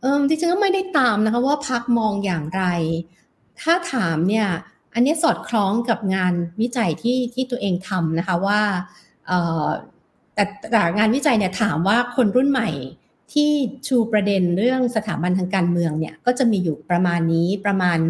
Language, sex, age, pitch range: Thai, female, 60-79, 190-255 Hz